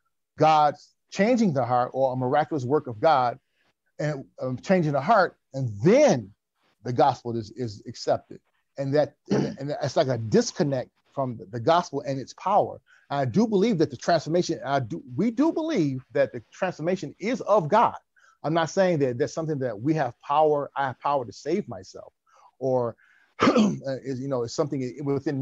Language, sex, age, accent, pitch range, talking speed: English, male, 40-59, American, 125-165 Hz, 175 wpm